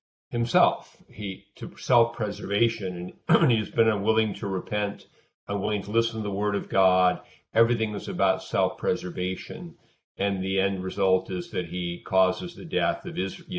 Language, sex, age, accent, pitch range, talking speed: English, male, 50-69, American, 90-115 Hz, 165 wpm